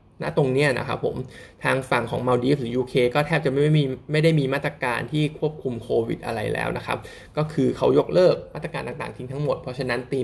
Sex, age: male, 20-39